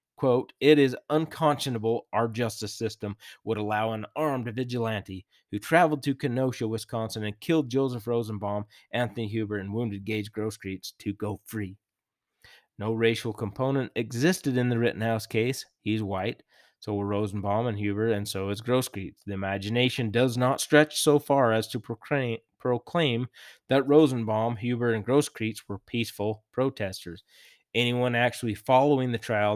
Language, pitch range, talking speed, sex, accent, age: English, 100-120 Hz, 150 wpm, male, American, 20-39